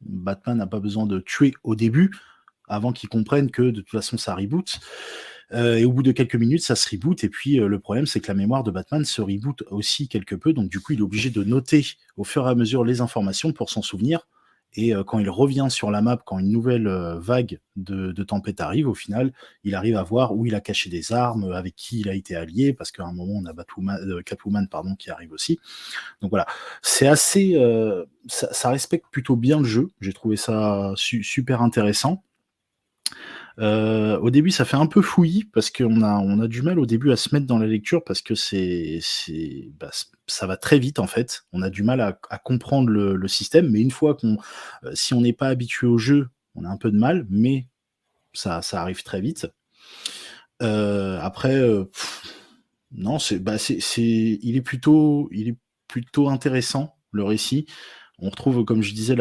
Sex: male